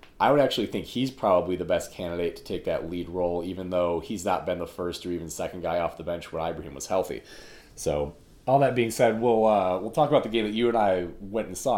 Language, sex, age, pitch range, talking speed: English, male, 30-49, 95-130 Hz, 260 wpm